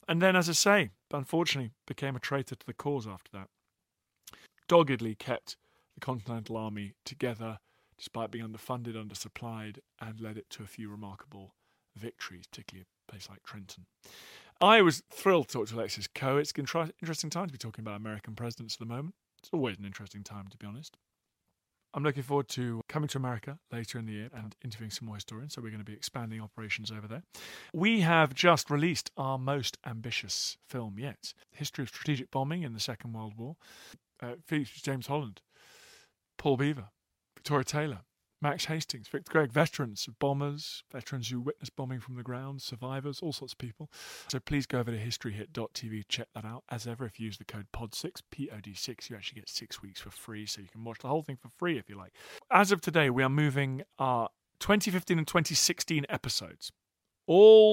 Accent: British